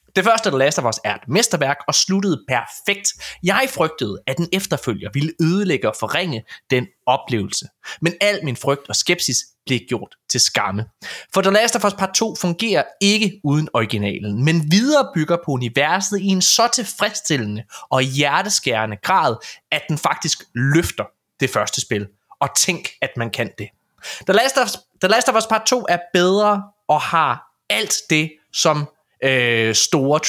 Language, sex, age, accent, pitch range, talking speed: Danish, male, 20-39, native, 120-190 Hz, 170 wpm